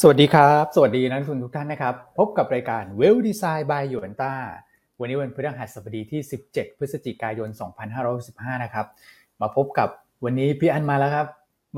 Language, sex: Thai, male